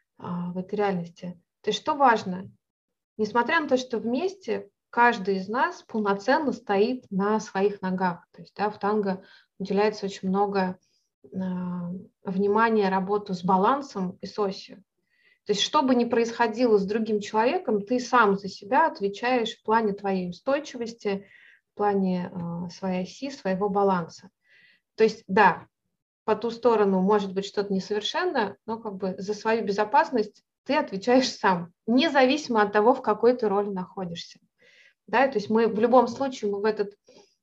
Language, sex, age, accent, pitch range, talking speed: Russian, female, 20-39, native, 195-235 Hz, 155 wpm